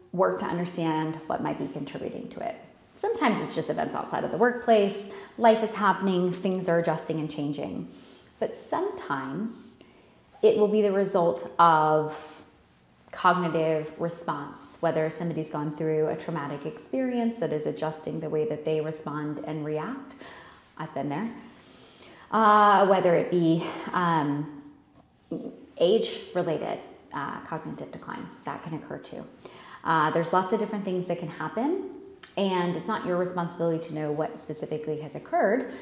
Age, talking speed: 20-39, 145 wpm